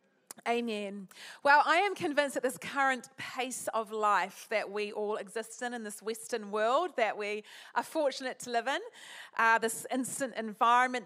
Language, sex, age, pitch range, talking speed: English, female, 30-49, 210-255 Hz, 170 wpm